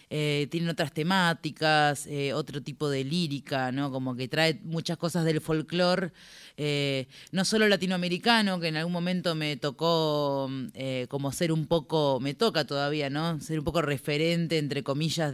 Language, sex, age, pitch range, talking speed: Spanish, female, 30-49, 150-190 Hz, 165 wpm